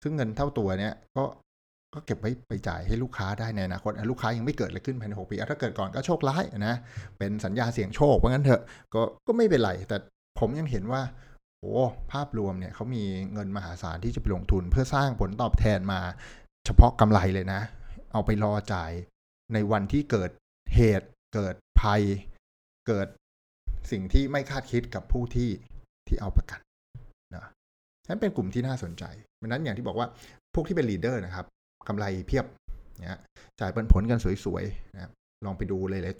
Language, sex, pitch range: Thai, male, 95-120 Hz